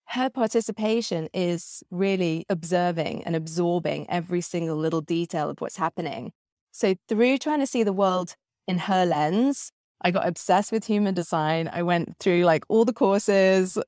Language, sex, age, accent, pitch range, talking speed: English, female, 20-39, British, 160-205 Hz, 160 wpm